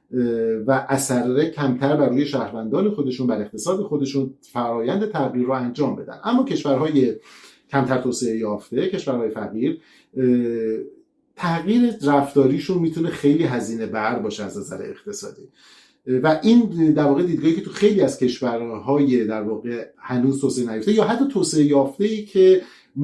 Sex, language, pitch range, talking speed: male, Persian, 120-155 Hz, 135 wpm